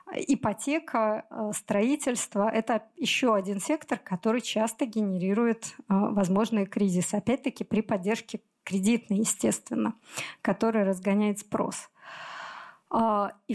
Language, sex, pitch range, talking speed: Russian, female, 205-245 Hz, 90 wpm